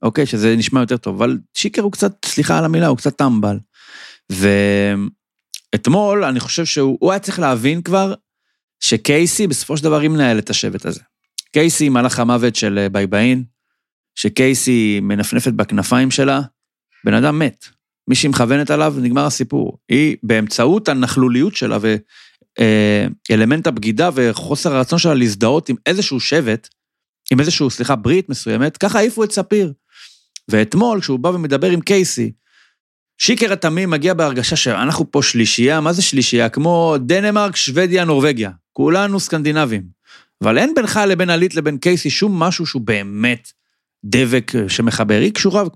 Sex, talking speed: male, 130 wpm